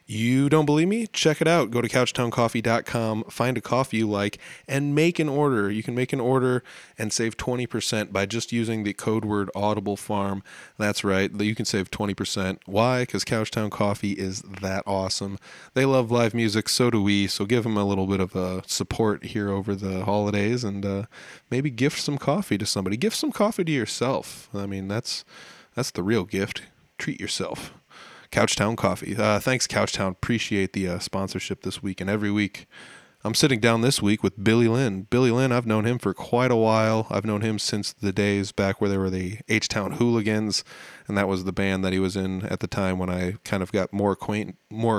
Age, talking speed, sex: 20-39, 205 wpm, male